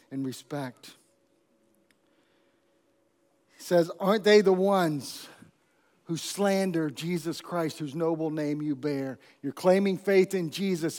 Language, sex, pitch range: English, male, 150-185 Hz